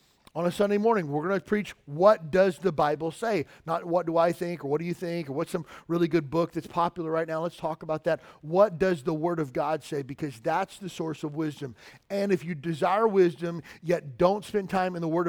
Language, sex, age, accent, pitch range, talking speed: English, male, 40-59, American, 160-195 Hz, 245 wpm